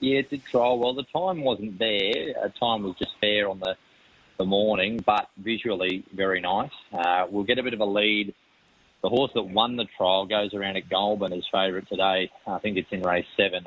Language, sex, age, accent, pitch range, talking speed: English, male, 30-49, Australian, 95-115 Hz, 220 wpm